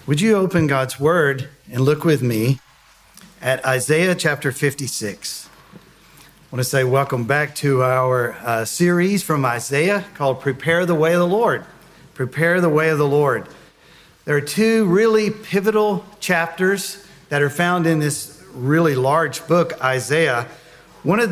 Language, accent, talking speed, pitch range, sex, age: English, American, 155 wpm, 140-180 Hz, male, 50-69